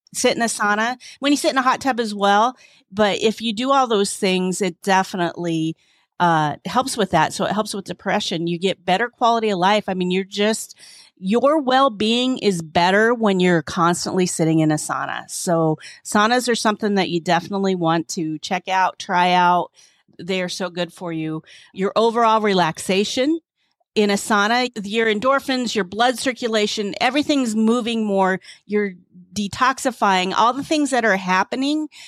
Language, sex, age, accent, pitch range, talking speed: English, female, 40-59, American, 175-230 Hz, 170 wpm